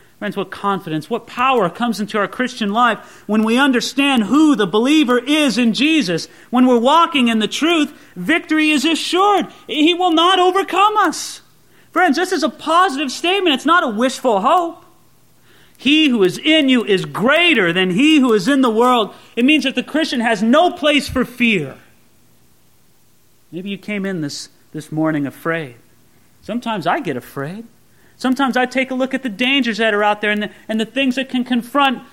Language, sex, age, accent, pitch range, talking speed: English, male, 40-59, American, 175-275 Hz, 185 wpm